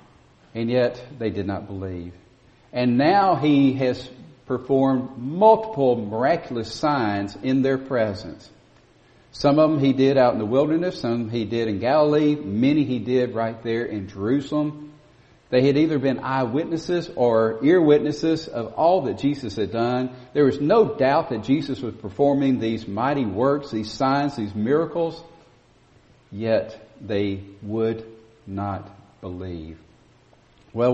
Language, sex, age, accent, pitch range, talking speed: English, male, 50-69, American, 115-165 Hz, 140 wpm